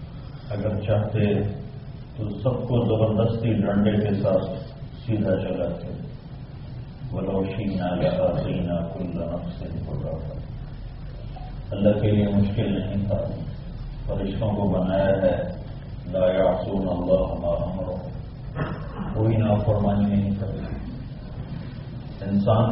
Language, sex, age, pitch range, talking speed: English, male, 40-59, 100-125 Hz, 105 wpm